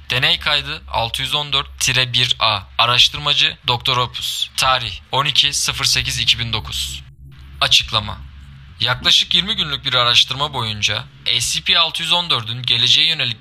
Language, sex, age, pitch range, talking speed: Turkish, male, 20-39, 115-145 Hz, 85 wpm